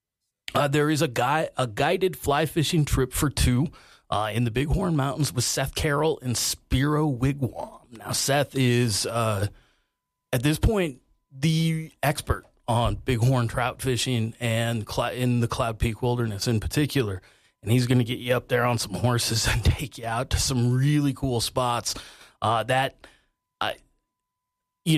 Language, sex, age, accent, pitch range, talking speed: English, male, 30-49, American, 115-135 Hz, 165 wpm